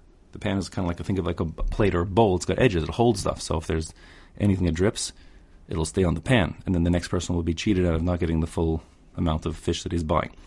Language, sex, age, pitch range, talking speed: English, male, 30-49, 85-100 Hz, 295 wpm